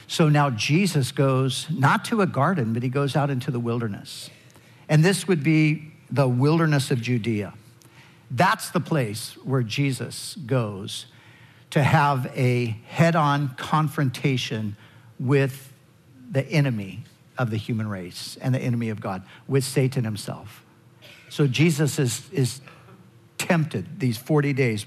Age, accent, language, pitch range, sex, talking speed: 50-69, American, English, 120-150 Hz, male, 140 wpm